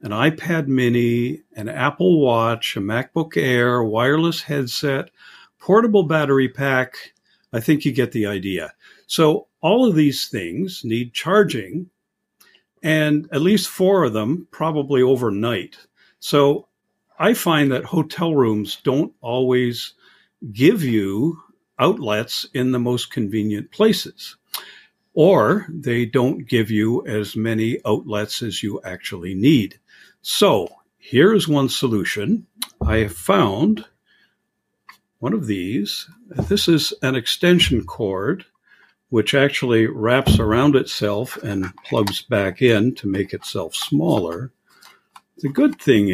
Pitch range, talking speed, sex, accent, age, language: 110-160 Hz, 125 wpm, male, American, 50-69, English